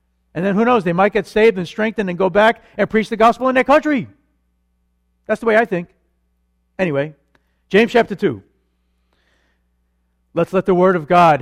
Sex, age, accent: male, 50-69, American